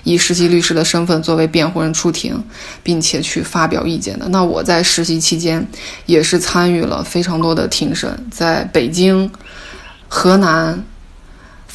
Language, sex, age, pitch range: Chinese, female, 20-39, 170-210 Hz